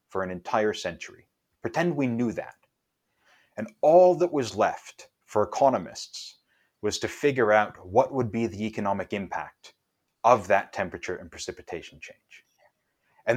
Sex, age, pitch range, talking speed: male, 30-49, 105-135 Hz, 145 wpm